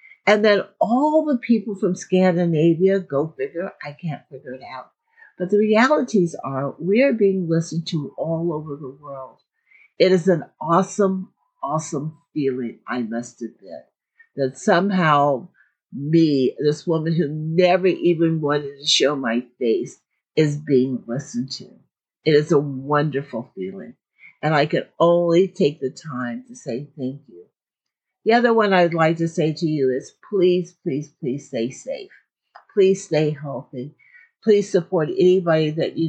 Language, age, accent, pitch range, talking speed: English, 60-79, American, 145-185 Hz, 155 wpm